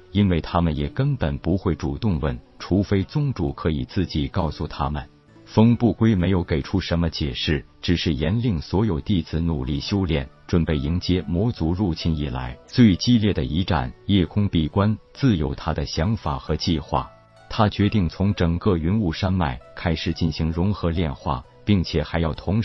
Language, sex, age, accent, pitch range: Chinese, male, 50-69, native, 80-100 Hz